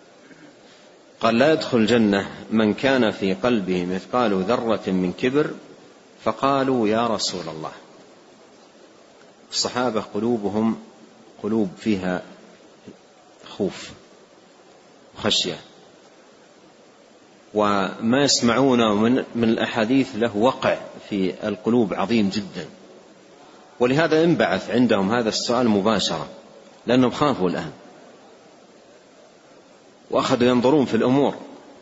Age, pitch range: 40-59, 100-125 Hz